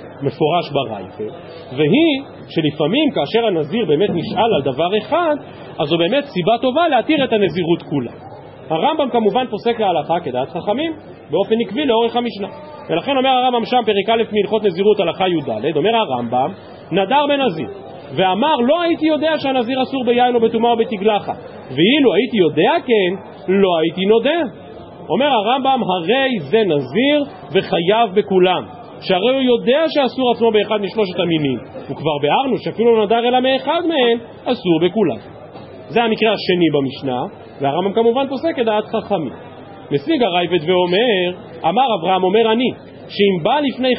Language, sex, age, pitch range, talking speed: Hebrew, male, 40-59, 175-245 Hz, 145 wpm